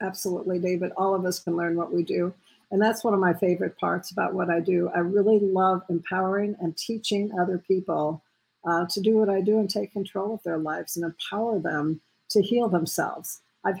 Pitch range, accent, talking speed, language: 170-195 Hz, American, 210 wpm, English